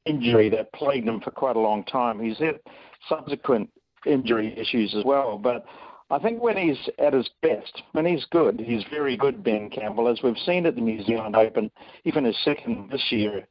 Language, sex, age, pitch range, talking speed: English, male, 50-69, 110-140 Hz, 200 wpm